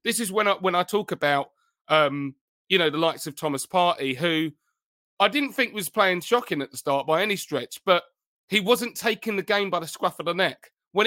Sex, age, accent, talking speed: male, 30-49, British, 230 wpm